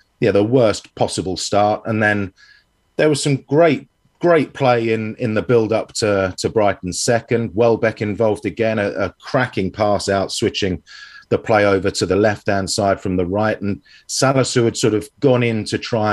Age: 30-49